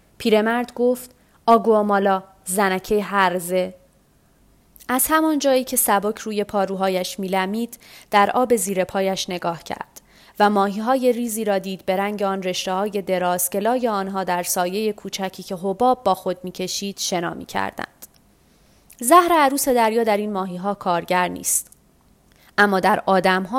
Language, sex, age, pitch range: Persian, female, 30-49, 185-215 Hz